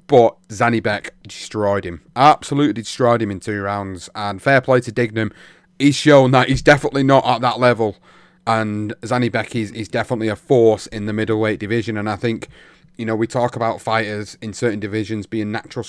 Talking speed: 185 wpm